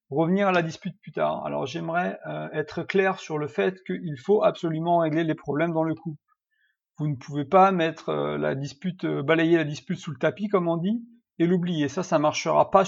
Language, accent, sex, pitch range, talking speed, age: French, French, male, 150-190 Hz, 220 wpm, 40-59